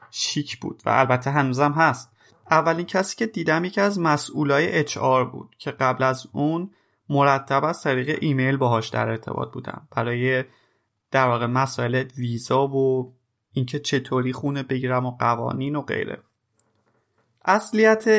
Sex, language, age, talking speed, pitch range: male, Persian, 30-49, 140 wpm, 125-155 Hz